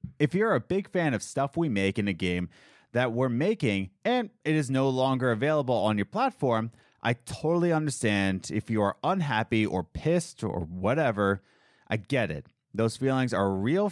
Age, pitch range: 30-49, 115-165 Hz